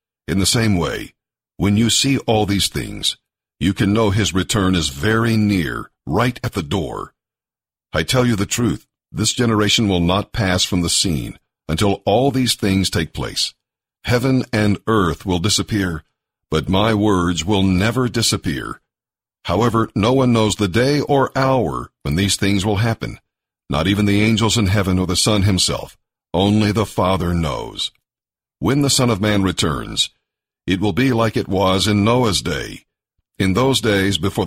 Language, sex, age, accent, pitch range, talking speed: English, male, 50-69, American, 95-115 Hz, 170 wpm